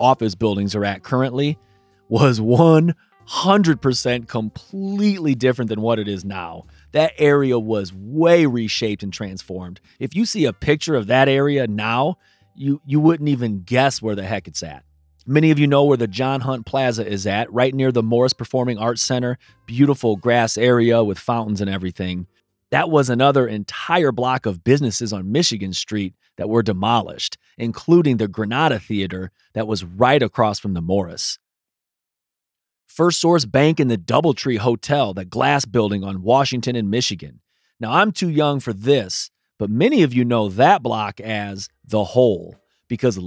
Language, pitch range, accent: English, 100-135 Hz, American